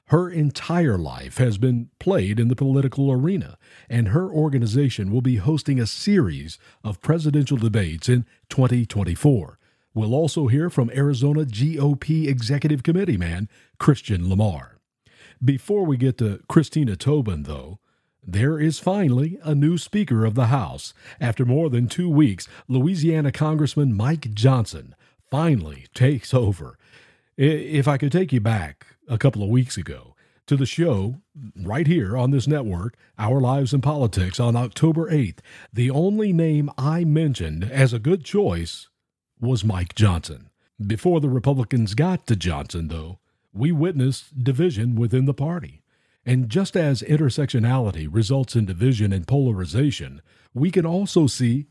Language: English